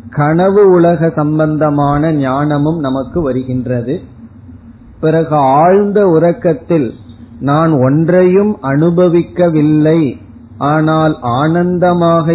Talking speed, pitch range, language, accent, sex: 65 wpm, 125-160 Hz, Tamil, native, male